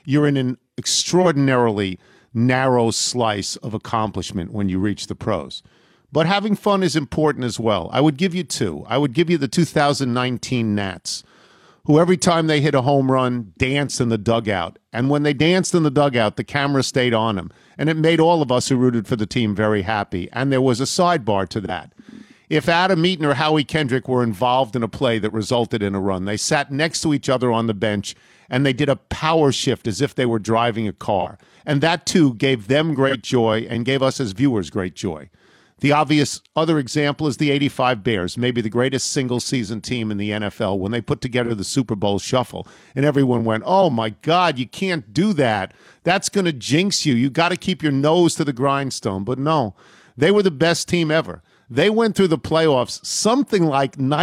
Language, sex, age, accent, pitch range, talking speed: English, male, 50-69, American, 115-155 Hz, 210 wpm